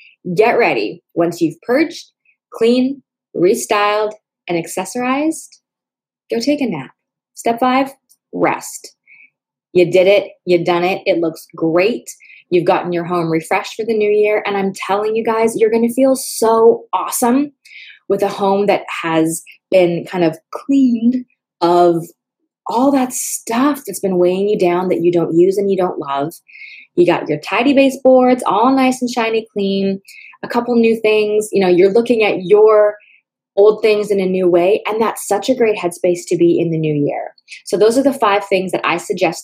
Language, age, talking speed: English, 20-39, 180 wpm